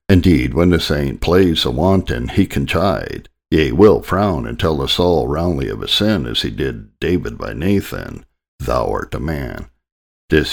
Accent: American